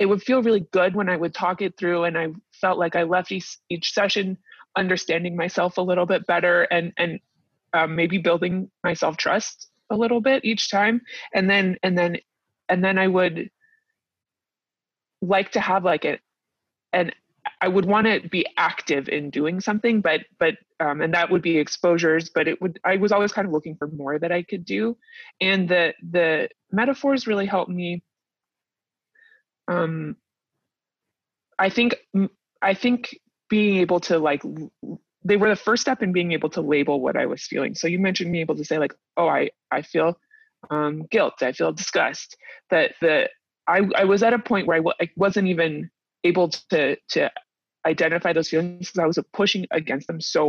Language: English